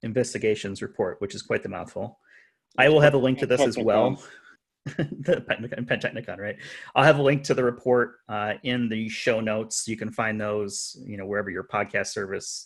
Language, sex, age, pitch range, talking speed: English, male, 30-49, 105-135 Hz, 195 wpm